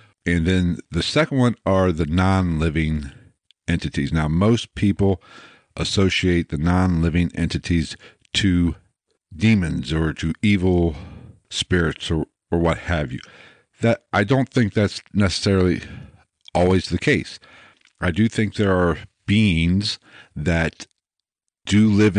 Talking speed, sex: 120 wpm, male